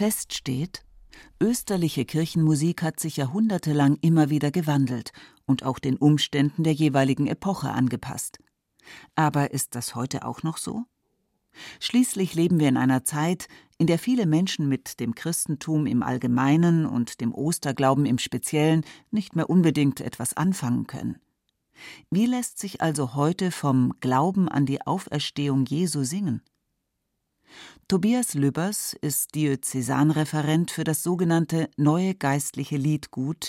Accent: German